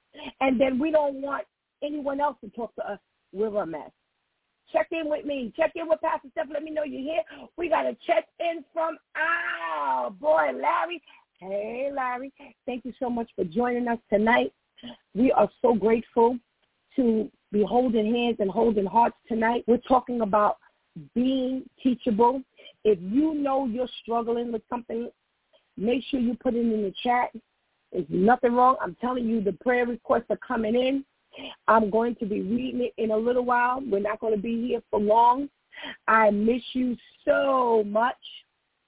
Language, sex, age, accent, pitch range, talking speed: English, female, 40-59, American, 220-275 Hz, 175 wpm